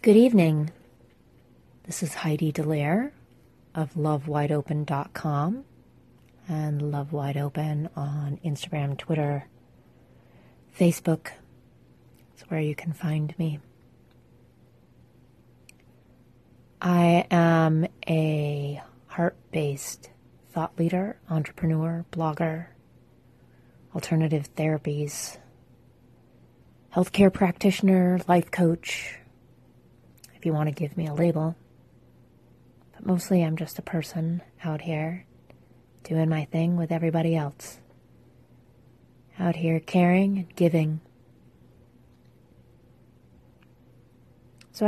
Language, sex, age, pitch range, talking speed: English, female, 30-49, 150-175 Hz, 85 wpm